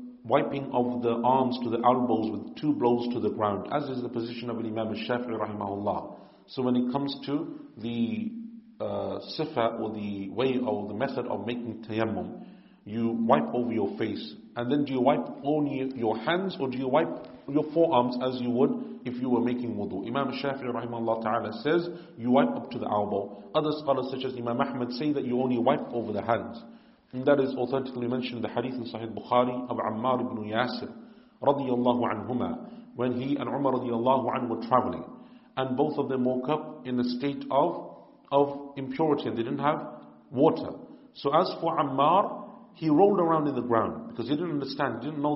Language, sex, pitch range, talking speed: English, male, 120-150 Hz, 190 wpm